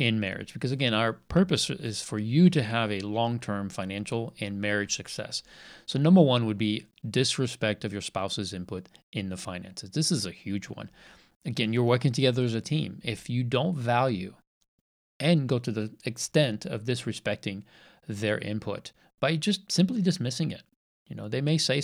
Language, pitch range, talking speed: English, 105-135 Hz, 180 wpm